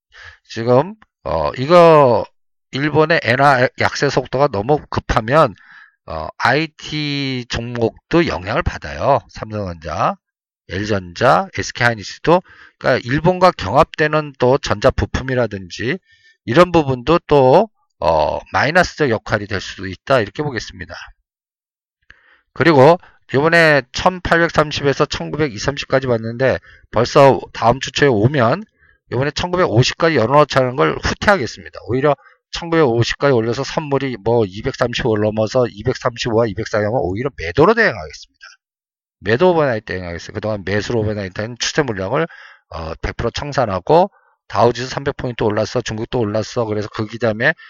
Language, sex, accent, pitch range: Korean, male, native, 110-150 Hz